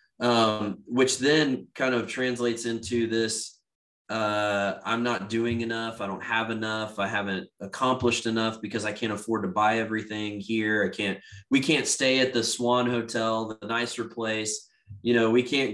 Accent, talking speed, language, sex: American, 170 wpm, English, male